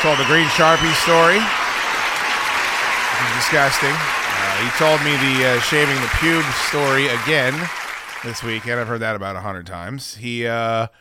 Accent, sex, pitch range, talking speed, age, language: American, male, 100-135 Hz, 175 wpm, 30-49, English